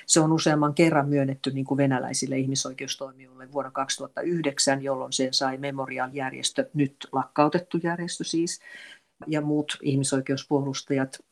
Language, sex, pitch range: Finnish, female, 135-150 Hz